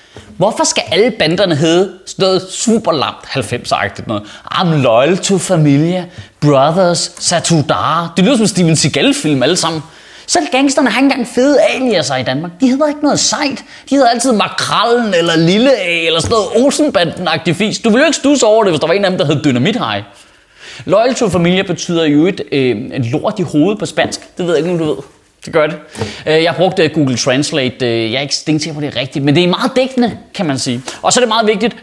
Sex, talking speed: male, 215 wpm